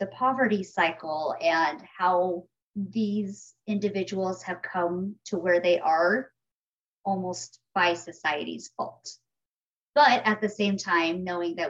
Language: English